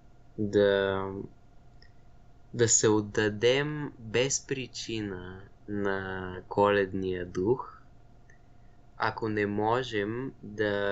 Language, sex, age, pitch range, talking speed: Bulgarian, male, 20-39, 100-120 Hz, 70 wpm